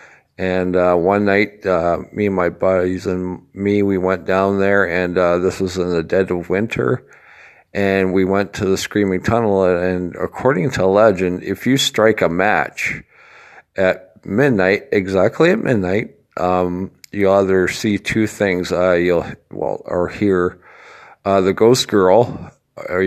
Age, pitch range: 50-69, 90-100 Hz